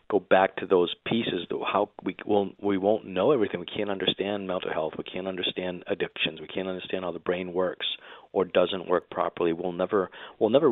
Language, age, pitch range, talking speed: English, 40-59, 90-100 Hz, 205 wpm